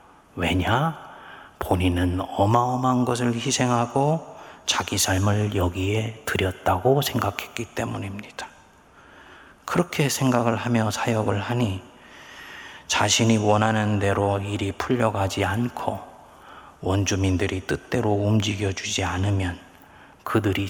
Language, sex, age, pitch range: Korean, male, 30-49, 100-120 Hz